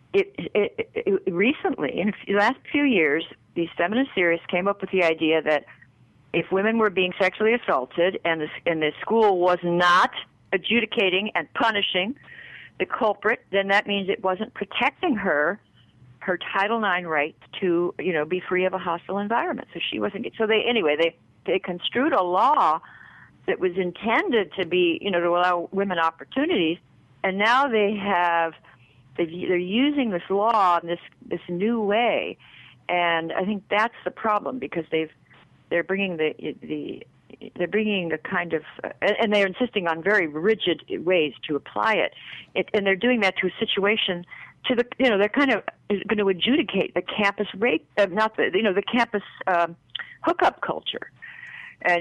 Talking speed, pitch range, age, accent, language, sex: 175 wpm, 170-220 Hz, 50-69, American, English, female